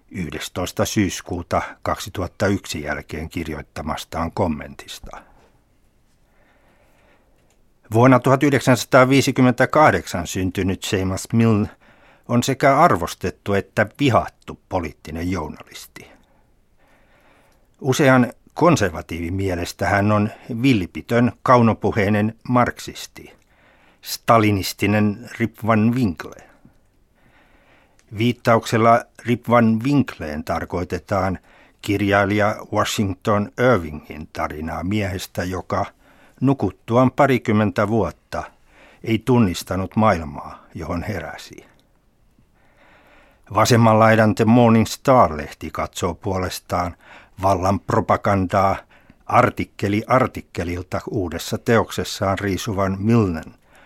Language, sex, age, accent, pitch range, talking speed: Finnish, male, 60-79, native, 95-120 Hz, 70 wpm